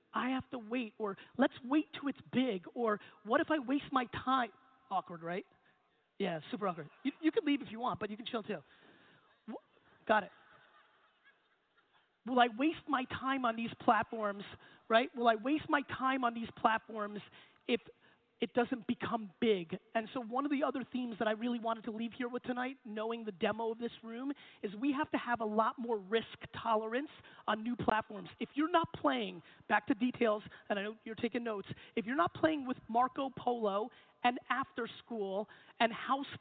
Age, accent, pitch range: 30-49, American, 225-285 Hz